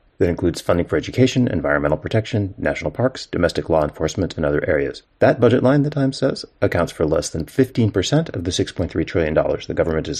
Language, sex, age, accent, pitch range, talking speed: English, male, 30-49, American, 80-110 Hz, 195 wpm